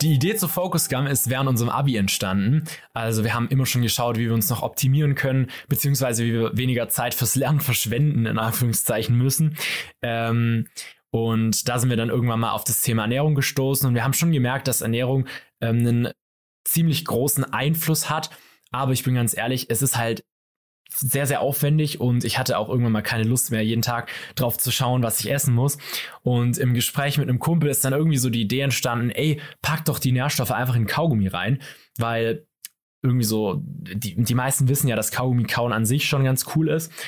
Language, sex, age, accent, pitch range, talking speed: German, male, 20-39, German, 115-145 Hz, 200 wpm